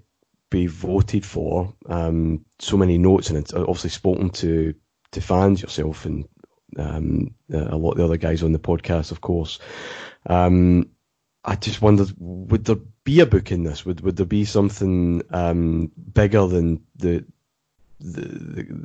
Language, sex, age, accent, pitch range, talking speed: English, male, 30-49, British, 85-100 Hz, 155 wpm